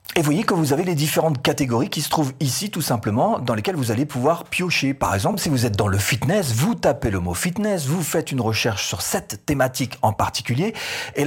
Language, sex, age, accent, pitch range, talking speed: French, male, 40-59, French, 120-175 Hz, 230 wpm